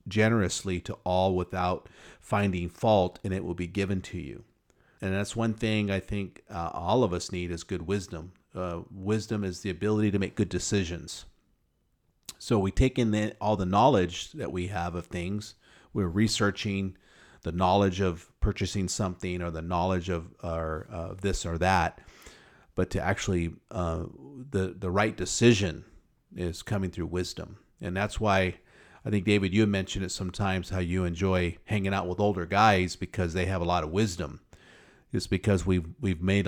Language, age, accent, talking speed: English, 40-59, American, 175 wpm